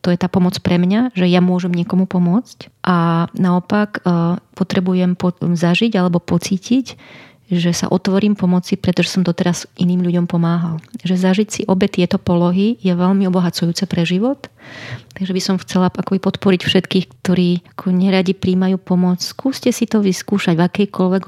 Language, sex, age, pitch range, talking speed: Slovak, female, 30-49, 170-190 Hz, 160 wpm